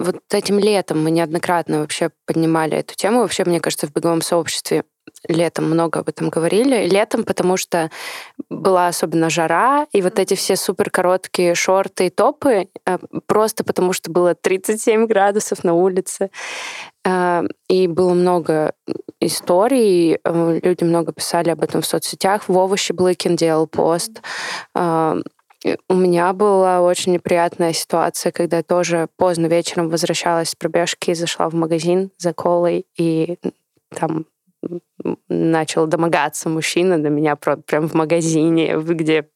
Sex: female